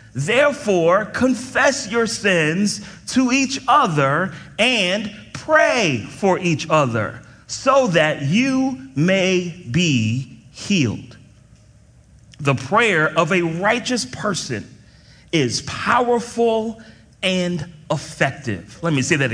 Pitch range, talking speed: 155-195 Hz, 100 wpm